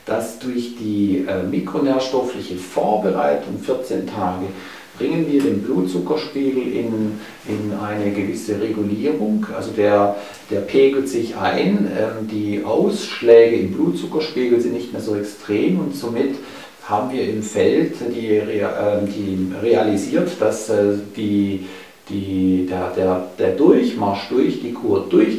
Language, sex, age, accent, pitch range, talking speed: German, male, 50-69, German, 100-125 Hz, 115 wpm